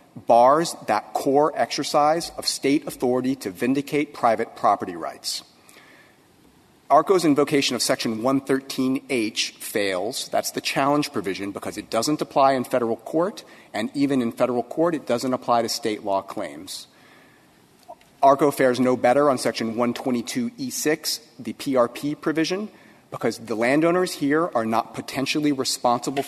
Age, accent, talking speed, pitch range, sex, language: 40-59, American, 135 wpm, 115-145 Hz, male, English